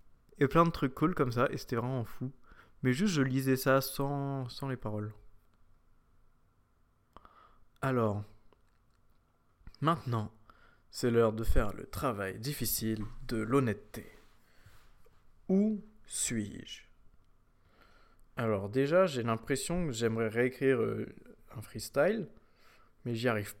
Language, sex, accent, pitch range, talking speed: French, male, French, 110-140 Hz, 115 wpm